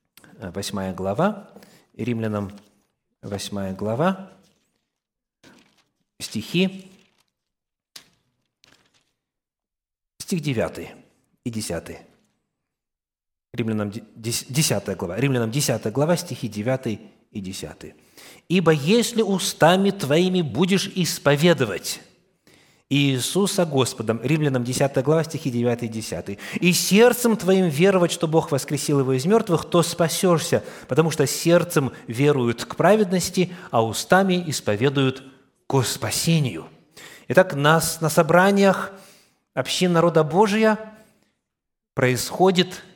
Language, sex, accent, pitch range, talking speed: Russian, male, native, 115-180 Hz, 90 wpm